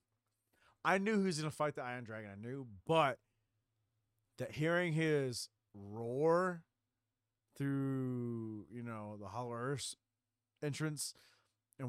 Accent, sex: American, male